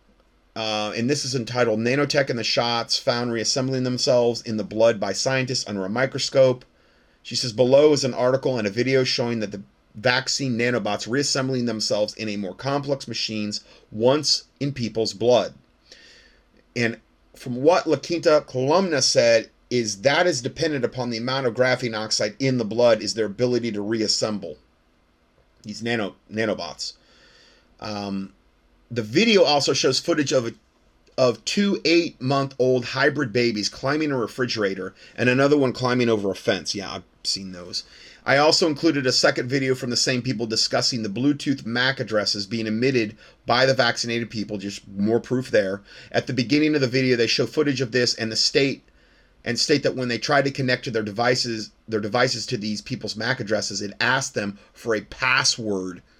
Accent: American